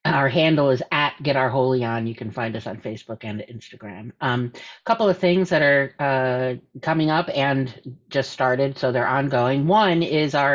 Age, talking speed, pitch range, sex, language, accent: 50-69, 200 wpm, 125-155 Hz, female, English, American